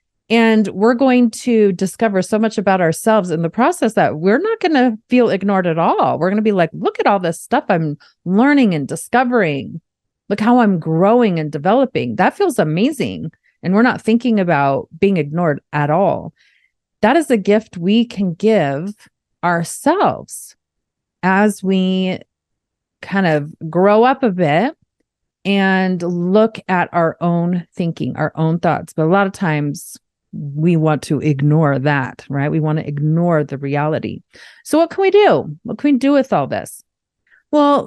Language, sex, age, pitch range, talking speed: English, female, 30-49, 170-250 Hz, 170 wpm